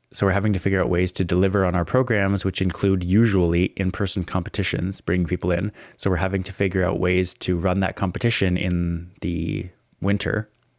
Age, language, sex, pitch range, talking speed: 20-39, English, male, 90-105 Hz, 190 wpm